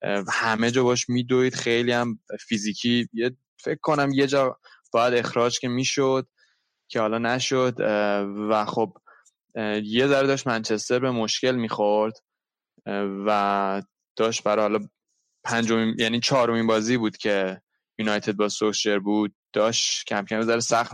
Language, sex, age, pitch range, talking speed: Persian, male, 20-39, 110-125 Hz, 140 wpm